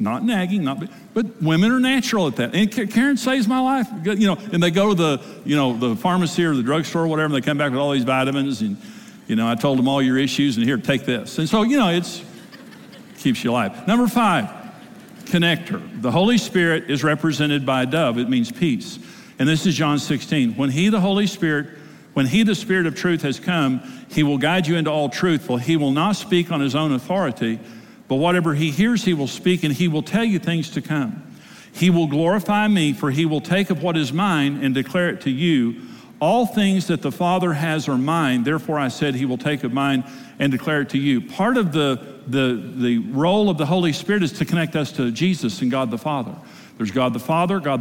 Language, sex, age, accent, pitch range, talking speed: English, male, 60-79, American, 140-195 Hz, 235 wpm